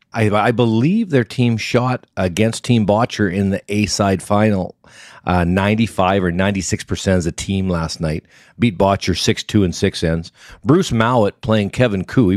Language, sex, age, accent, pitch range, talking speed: English, male, 40-59, American, 95-120 Hz, 160 wpm